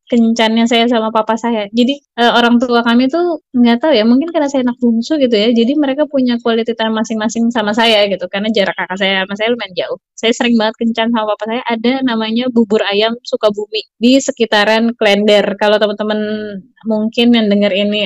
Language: Indonesian